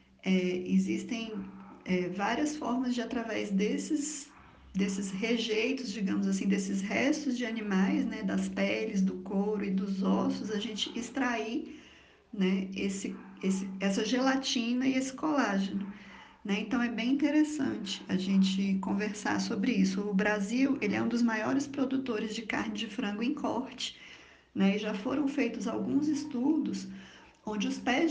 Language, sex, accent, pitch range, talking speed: Portuguese, female, Brazilian, 195-255 Hz, 145 wpm